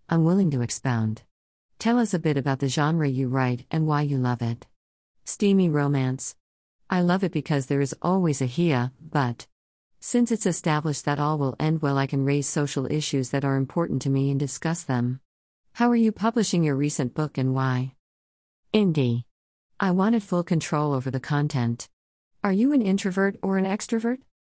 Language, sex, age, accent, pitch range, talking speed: English, female, 50-69, American, 125-175 Hz, 185 wpm